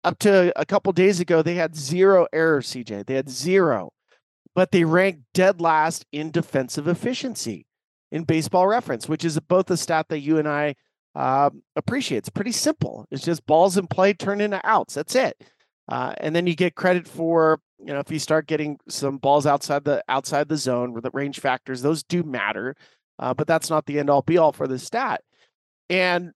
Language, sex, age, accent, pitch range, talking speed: English, male, 40-59, American, 155-195 Hz, 200 wpm